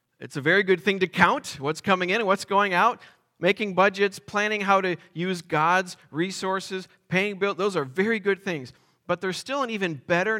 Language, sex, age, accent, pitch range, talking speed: English, male, 40-59, American, 150-200 Hz, 200 wpm